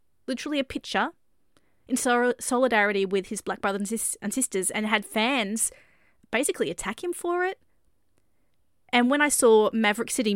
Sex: female